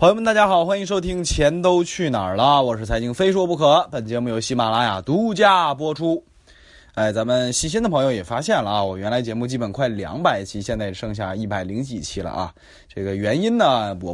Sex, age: male, 20-39